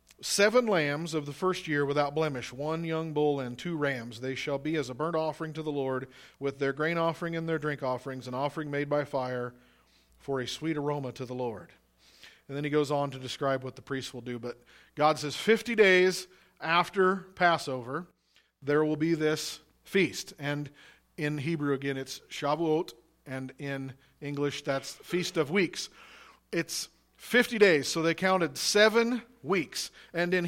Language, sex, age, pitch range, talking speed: English, male, 40-59, 140-185 Hz, 180 wpm